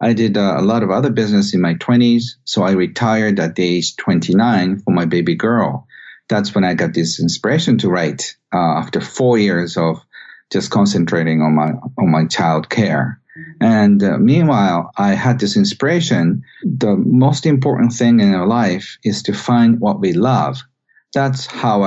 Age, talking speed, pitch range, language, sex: 50-69, 170 wpm, 95-120 Hz, English, male